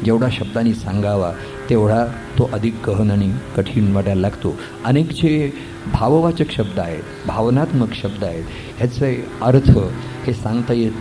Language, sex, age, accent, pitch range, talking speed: Marathi, male, 50-69, native, 105-135 Hz, 130 wpm